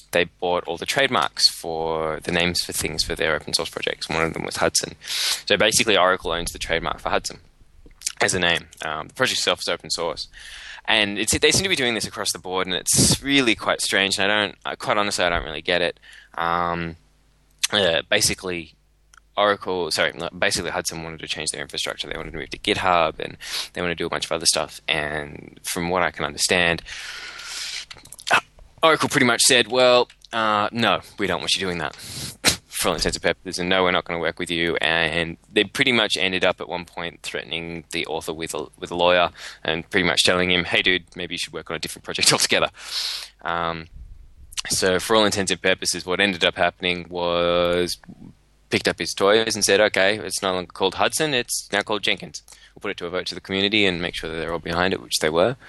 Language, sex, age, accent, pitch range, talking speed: English, male, 10-29, Australian, 85-100 Hz, 220 wpm